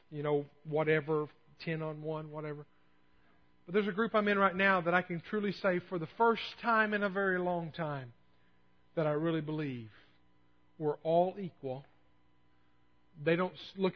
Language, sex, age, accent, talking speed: English, male, 50-69, American, 170 wpm